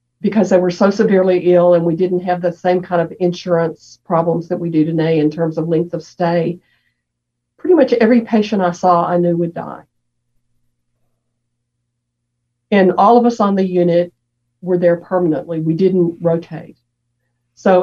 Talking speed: 170 wpm